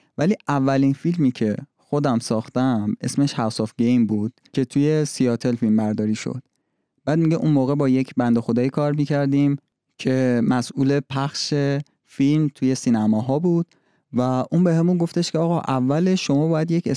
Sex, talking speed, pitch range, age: male, 160 wpm, 115-150 Hz, 30-49